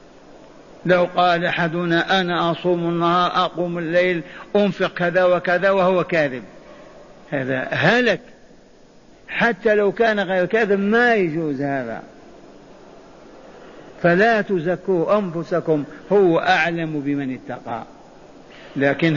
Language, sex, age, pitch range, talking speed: Arabic, male, 50-69, 150-185 Hz, 95 wpm